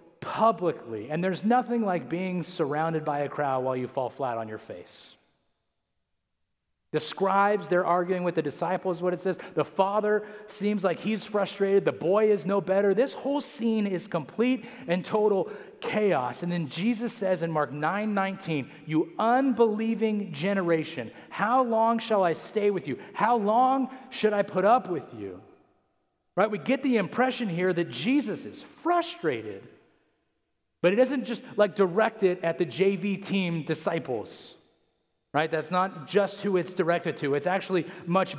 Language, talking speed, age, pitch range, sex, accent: English, 165 wpm, 40-59, 165-210 Hz, male, American